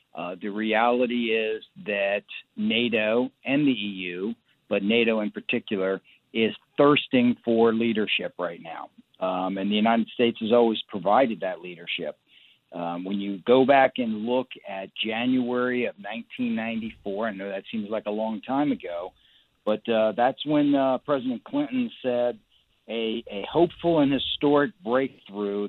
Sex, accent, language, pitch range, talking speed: male, American, English, 105-125 Hz, 145 wpm